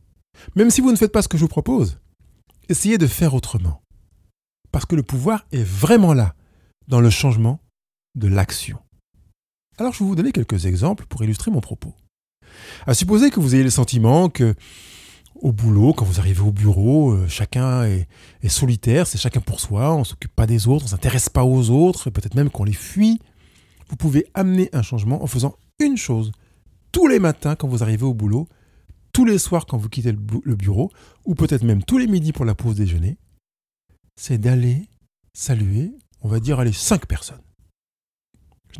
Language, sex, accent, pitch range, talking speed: French, male, French, 100-150 Hz, 190 wpm